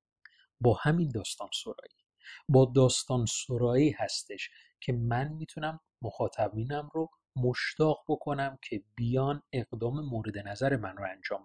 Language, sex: Persian, male